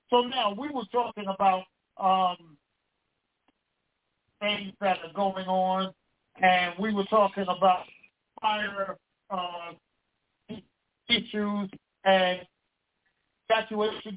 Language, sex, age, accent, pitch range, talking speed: English, male, 50-69, American, 195-230 Hz, 95 wpm